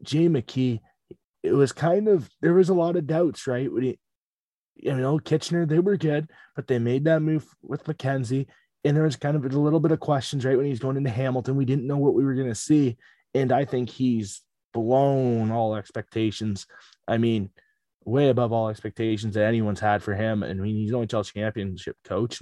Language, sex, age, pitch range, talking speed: English, male, 20-39, 105-130 Hz, 210 wpm